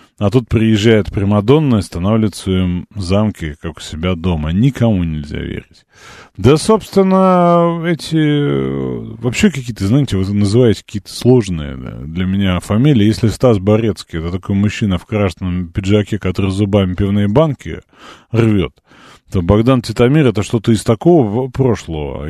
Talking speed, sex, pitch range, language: 135 wpm, male, 95-135 Hz, Russian